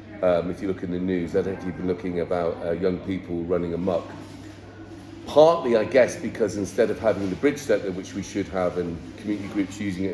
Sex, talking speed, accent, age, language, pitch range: male, 215 wpm, British, 40-59, English, 90-115 Hz